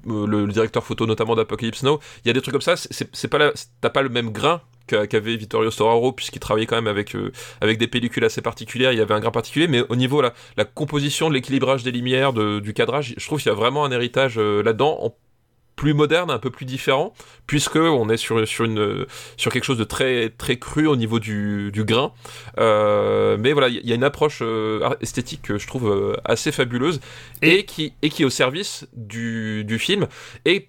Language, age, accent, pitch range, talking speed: French, 20-39, French, 110-135 Hz, 225 wpm